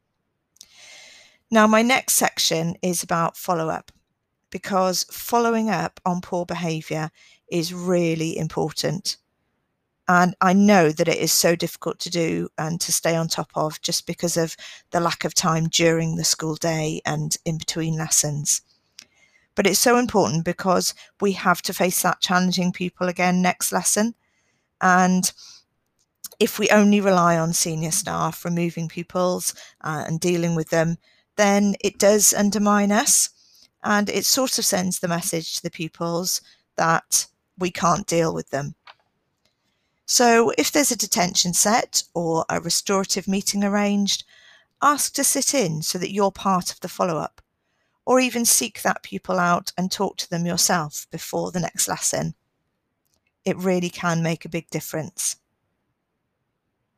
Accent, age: British, 40-59